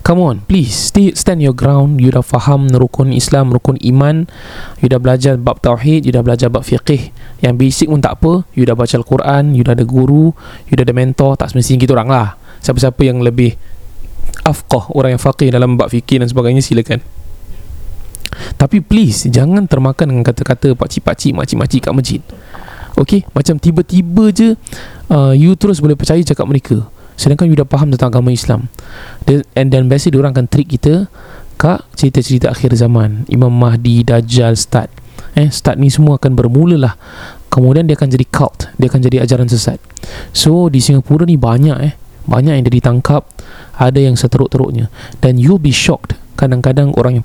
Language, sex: Malay, male